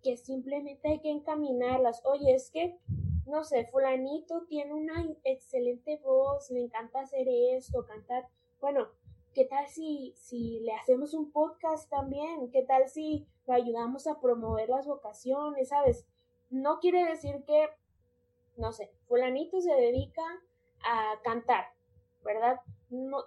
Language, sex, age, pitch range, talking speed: Spanish, female, 20-39, 230-290 Hz, 135 wpm